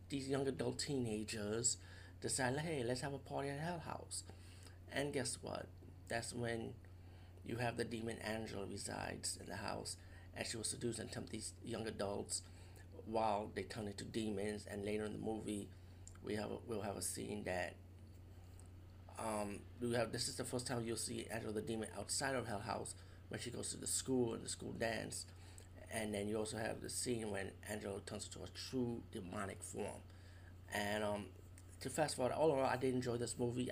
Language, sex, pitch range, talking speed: English, male, 90-115 Hz, 195 wpm